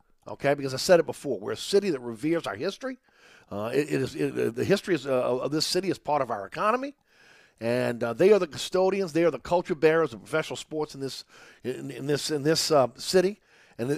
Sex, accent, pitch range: male, American, 130-175 Hz